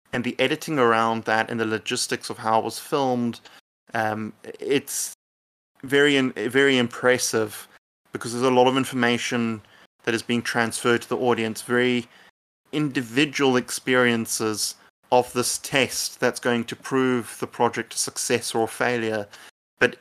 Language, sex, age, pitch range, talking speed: English, male, 20-39, 110-125 Hz, 150 wpm